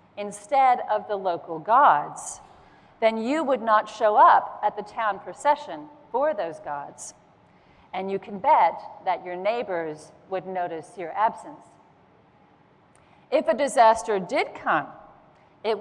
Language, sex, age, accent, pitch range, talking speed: English, female, 40-59, American, 170-235 Hz, 135 wpm